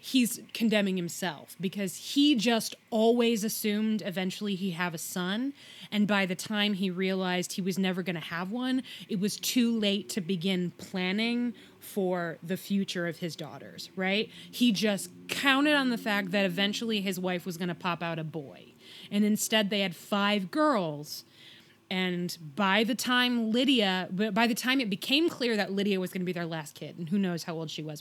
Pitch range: 180-220 Hz